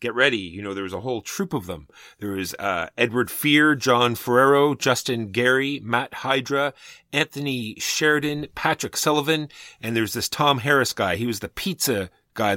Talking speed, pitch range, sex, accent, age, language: 175 wpm, 95-120 Hz, male, American, 30-49, English